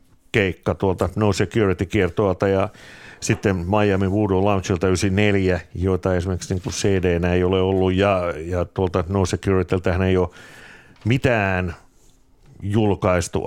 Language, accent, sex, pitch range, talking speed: Finnish, native, male, 95-110 Hz, 125 wpm